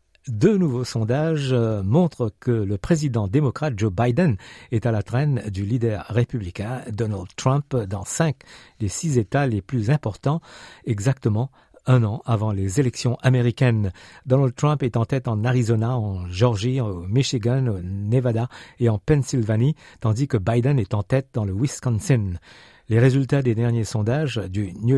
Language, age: French, 50-69